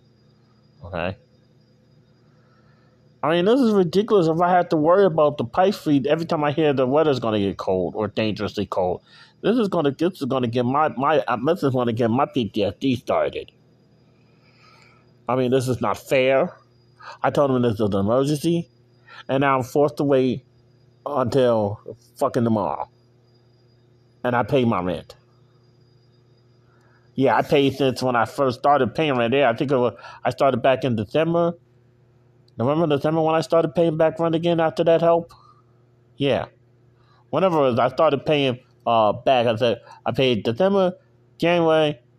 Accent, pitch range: American, 120-150 Hz